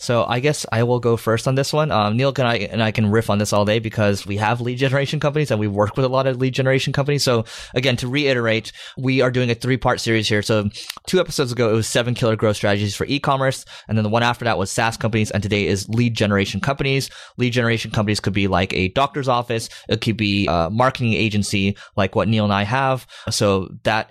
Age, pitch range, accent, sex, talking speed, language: 20-39, 105-130 Hz, American, male, 245 wpm, English